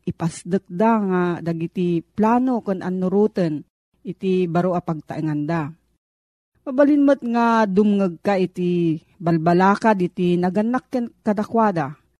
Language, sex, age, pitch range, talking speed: Filipino, female, 40-59, 175-230 Hz, 105 wpm